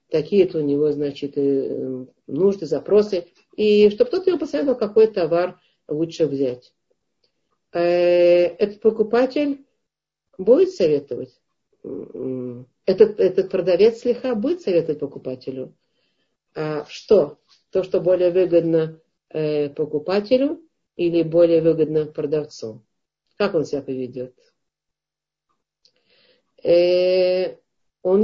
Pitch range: 160-215 Hz